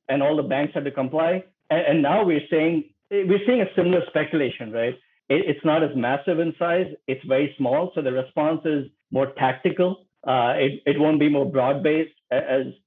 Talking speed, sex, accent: 200 wpm, male, Indian